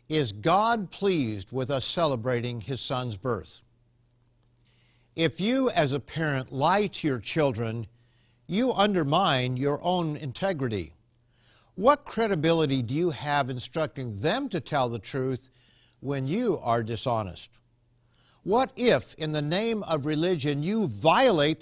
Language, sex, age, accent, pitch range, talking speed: English, male, 60-79, American, 120-165 Hz, 130 wpm